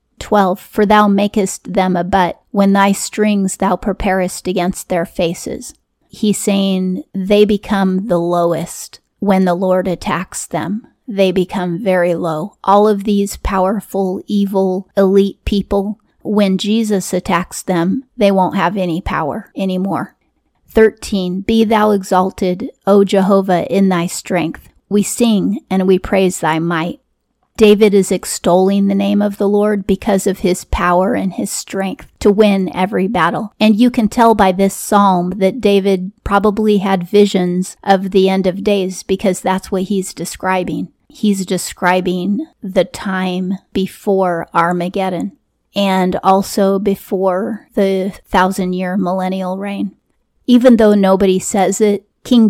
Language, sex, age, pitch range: English, female, 30-49, 185-205 Hz